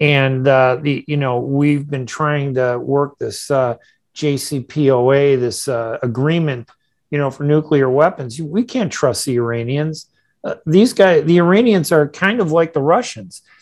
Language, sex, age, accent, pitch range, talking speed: English, male, 50-69, American, 135-165 Hz, 165 wpm